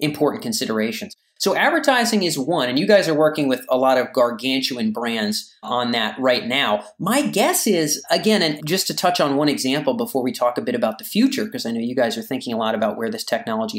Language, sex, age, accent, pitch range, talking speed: English, male, 30-49, American, 130-205 Hz, 230 wpm